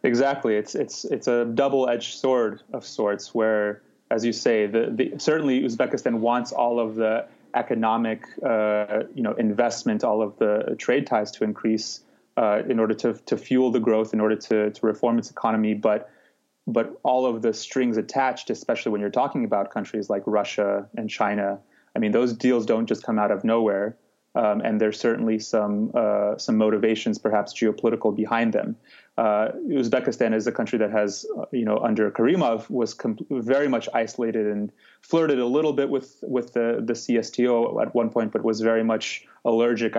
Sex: male